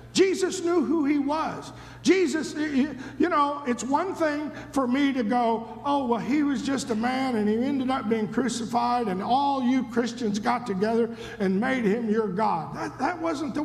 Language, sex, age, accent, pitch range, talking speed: English, male, 50-69, American, 220-300 Hz, 190 wpm